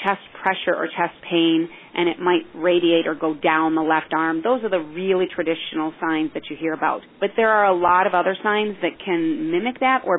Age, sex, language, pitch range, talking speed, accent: 30-49, female, English, 170-215 Hz, 225 wpm, American